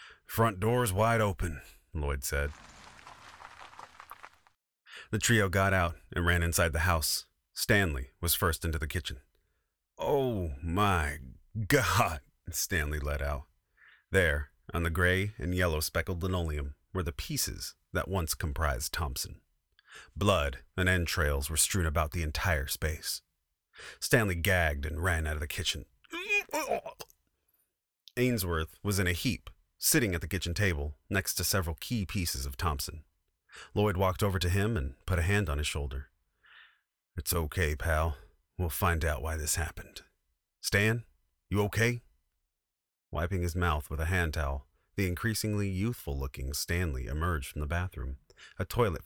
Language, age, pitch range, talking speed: English, 30-49, 75-95 Hz, 145 wpm